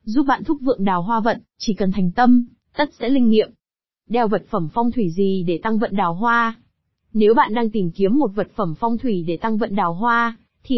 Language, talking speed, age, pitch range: Vietnamese, 235 wpm, 20-39, 205-245 Hz